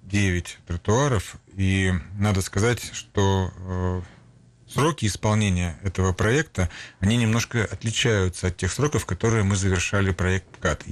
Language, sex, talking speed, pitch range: Russian, male, 110 wpm, 95-110 Hz